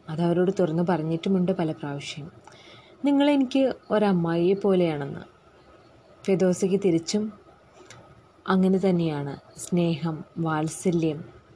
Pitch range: 170-225 Hz